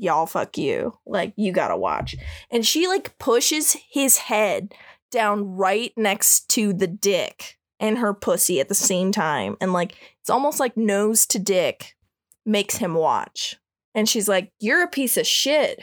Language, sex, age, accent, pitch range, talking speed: English, female, 20-39, American, 195-270 Hz, 170 wpm